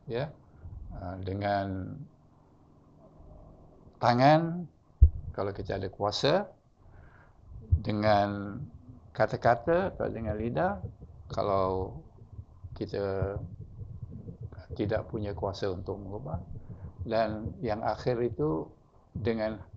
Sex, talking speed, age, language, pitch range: male, 75 wpm, 60-79, English, 95-120 Hz